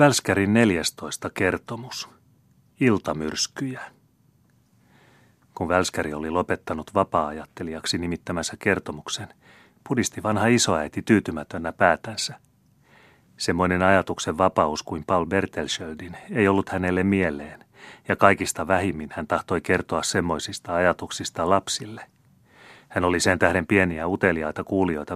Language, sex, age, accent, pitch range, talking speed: Finnish, male, 30-49, native, 80-100 Hz, 100 wpm